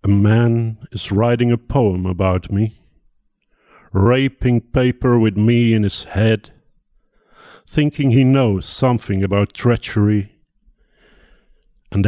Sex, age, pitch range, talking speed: male, 50-69, 100-120 Hz, 110 wpm